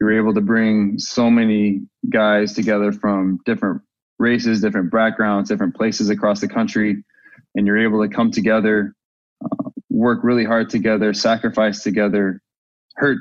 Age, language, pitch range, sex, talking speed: 20-39, English, 100-110 Hz, male, 145 wpm